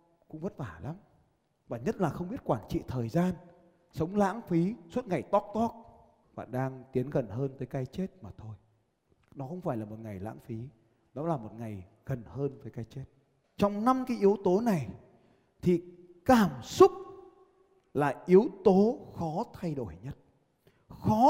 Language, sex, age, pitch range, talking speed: Vietnamese, male, 20-39, 130-205 Hz, 180 wpm